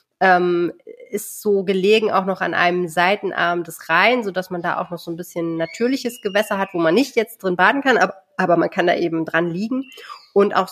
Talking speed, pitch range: 215 wpm, 170-205 Hz